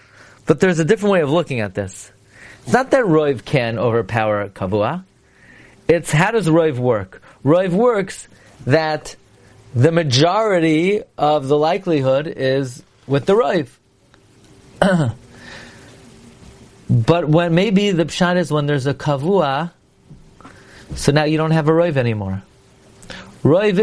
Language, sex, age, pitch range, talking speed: English, male, 40-59, 135-230 Hz, 130 wpm